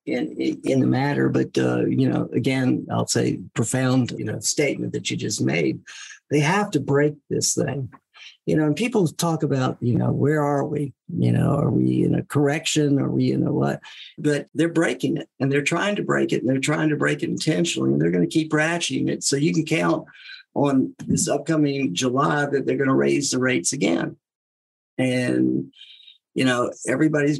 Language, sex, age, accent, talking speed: English, male, 50-69, American, 200 wpm